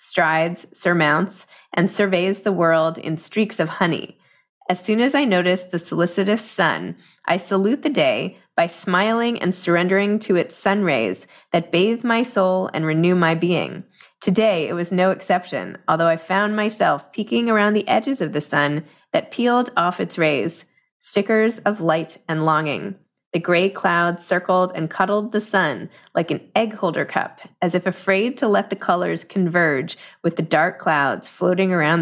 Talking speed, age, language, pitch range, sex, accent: 170 wpm, 20-39, English, 165-205 Hz, female, American